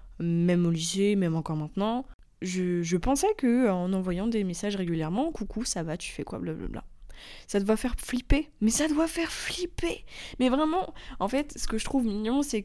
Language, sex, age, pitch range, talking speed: French, female, 20-39, 185-235 Hz, 195 wpm